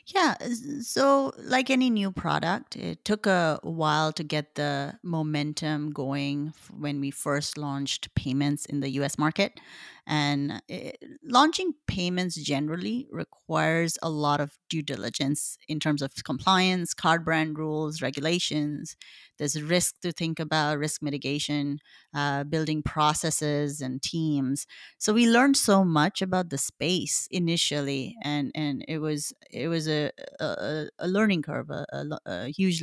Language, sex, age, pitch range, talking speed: English, female, 30-49, 145-190 Hz, 145 wpm